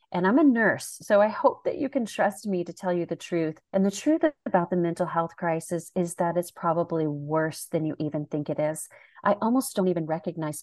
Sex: female